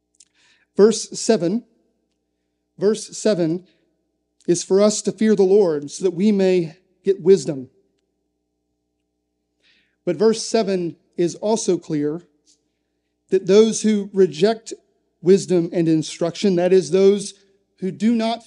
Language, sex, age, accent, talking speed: English, male, 40-59, American, 115 wpm